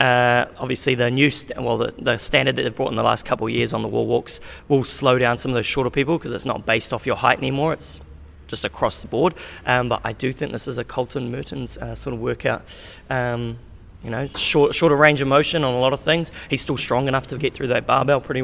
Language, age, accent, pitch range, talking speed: English, 20-39, Australian, 120-150 Hz, 260 wpm